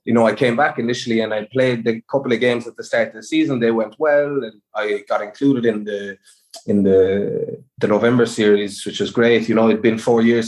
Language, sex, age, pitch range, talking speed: English, male, 20-39, 105-125 Hz, 240 wpm